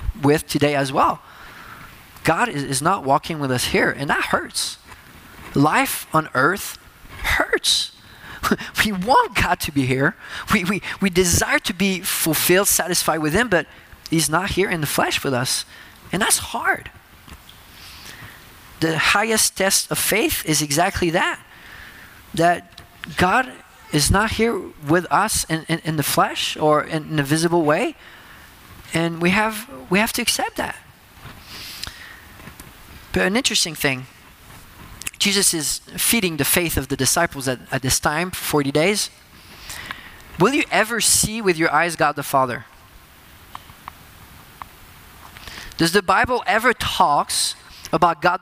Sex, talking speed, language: male, 145 wpm, English